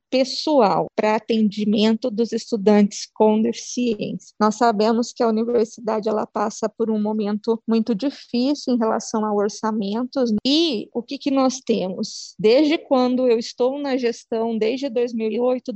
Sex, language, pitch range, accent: female, Portuguese, 215-260 Hz, Brazilian